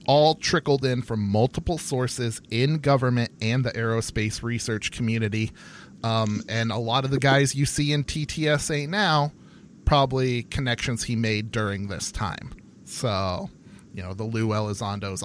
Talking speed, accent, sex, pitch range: 150 wpm, American, male, 110-150 Hz